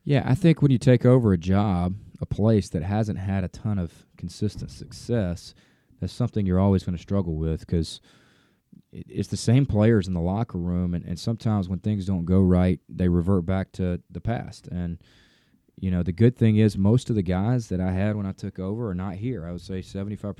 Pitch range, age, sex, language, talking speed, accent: 90-110 Hz, 20-39, male, English, 225 wpm, American